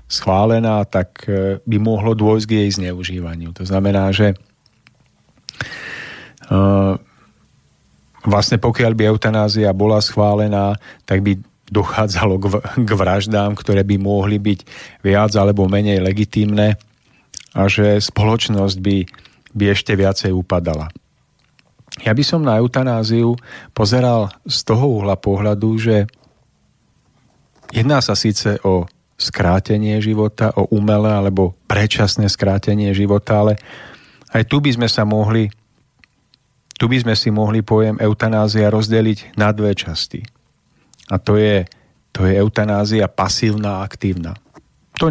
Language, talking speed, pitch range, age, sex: Slovak, 120 wpm, 100-110 Hz, 40-59, male